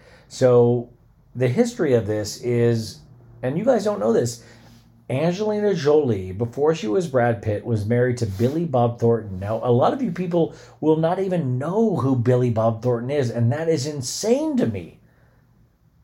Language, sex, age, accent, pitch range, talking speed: English, male, 40-59, American, 115-155 Hz, 170 wpm